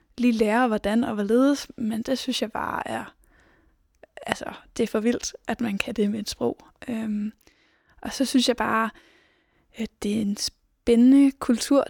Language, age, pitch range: Danish, 20-39, 225-250 Hz